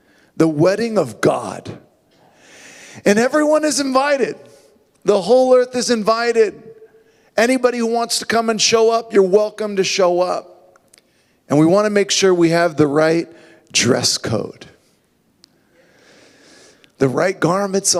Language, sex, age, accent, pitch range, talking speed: English, male, 40-59, American, 140-185 Hz, 135 wpm